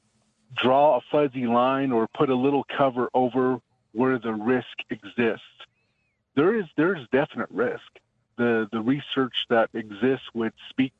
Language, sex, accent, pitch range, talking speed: English, male, American, 110-130 Hz, 145 wpm